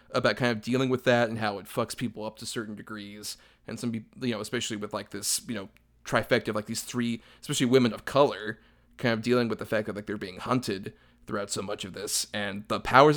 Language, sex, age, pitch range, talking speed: English, male, 30-49, 110-135 Hz, 250 wpm